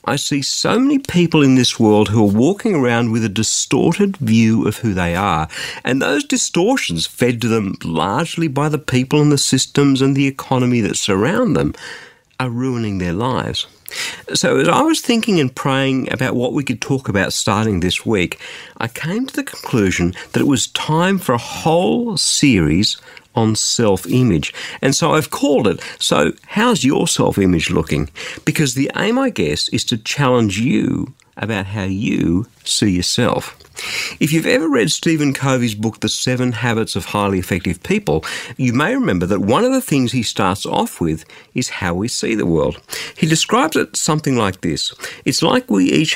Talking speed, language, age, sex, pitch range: 185 wpm, English, 50-69, male, 105-150 Hz